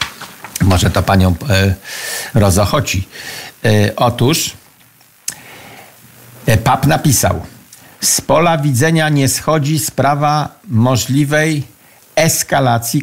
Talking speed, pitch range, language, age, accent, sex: 70 wpm, 105-150 Hz, Polish, 50-69, native, male